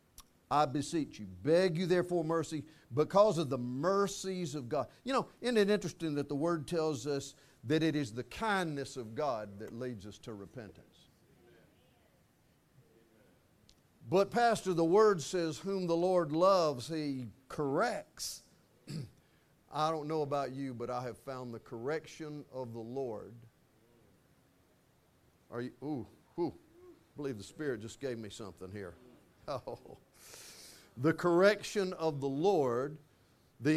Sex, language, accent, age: male, English, American, 50-69